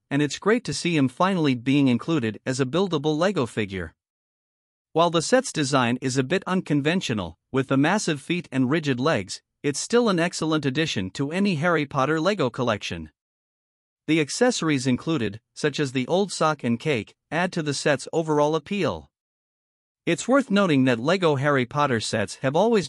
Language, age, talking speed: English, 50-69, 175 wpm